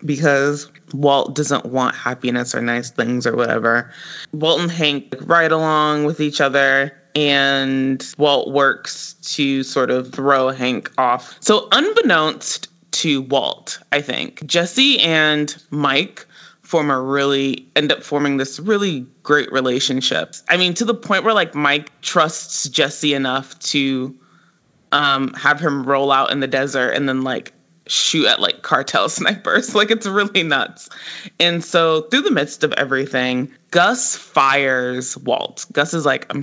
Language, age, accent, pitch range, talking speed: English, 20-39, American, 130-160 Hz, 150 wpm